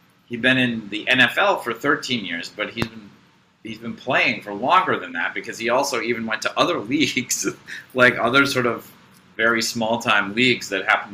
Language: English